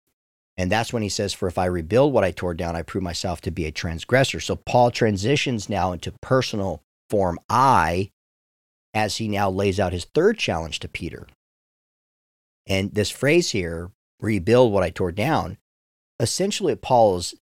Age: 40-59